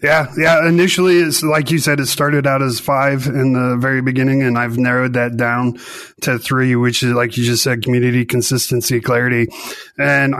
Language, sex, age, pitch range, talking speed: English, male, 30-49, 125-140 Hz, 190 wpm